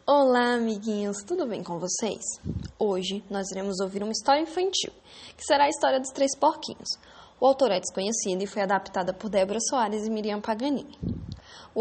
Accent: Brazilian